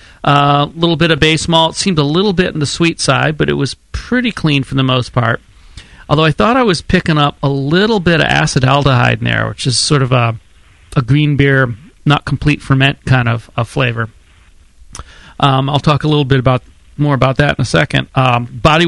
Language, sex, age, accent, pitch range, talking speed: English, male, 40-59, American, 125-155 Hz, 220 wpm